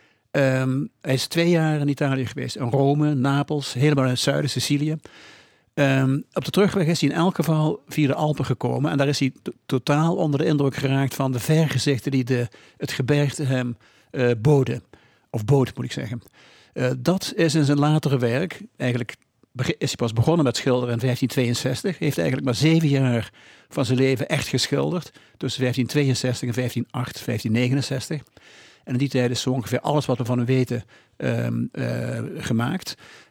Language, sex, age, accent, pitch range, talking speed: Dutch, male, 60-79, Dutch, 125-145 Hz, 180 wpm